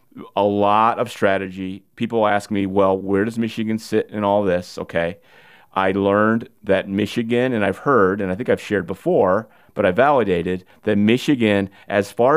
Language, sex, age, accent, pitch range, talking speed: English, male, 30-49, American, 95-110 Hz, 175 wpm